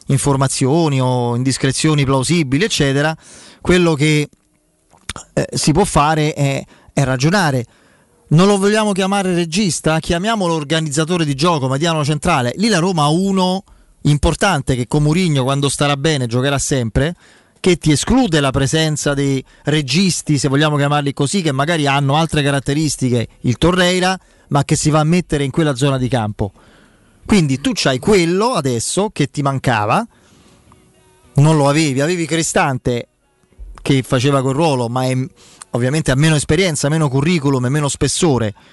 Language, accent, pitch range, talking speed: Italian, native, 135-165 Hz, 150 wpm